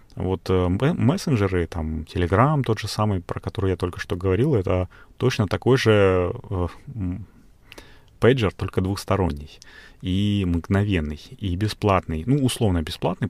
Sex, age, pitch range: male, 30-49, 90-110 Hz